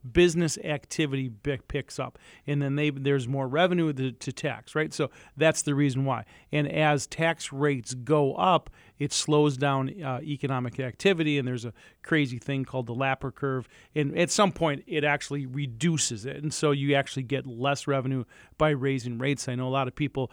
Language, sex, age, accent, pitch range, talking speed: English, male, 40-59, American, 130-155 Hz, 190 wpm